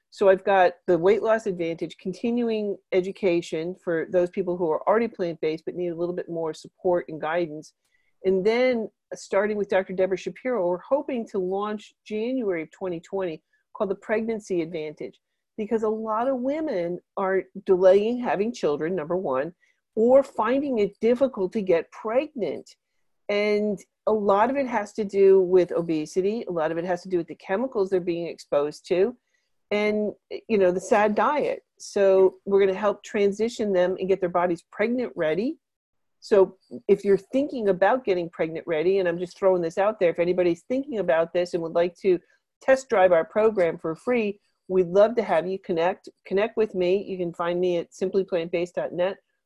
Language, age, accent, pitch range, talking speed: English, 50-69, American, 175-220 Hz, 180 wpm